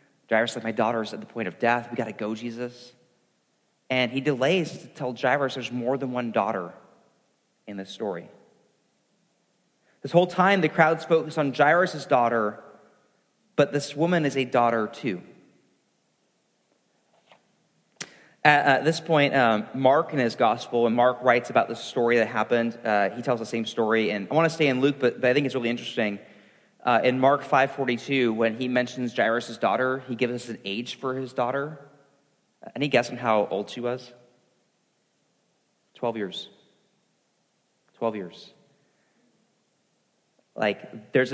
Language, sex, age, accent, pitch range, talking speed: English, male, 30-49, American, 115-140 Hz, 165 wpm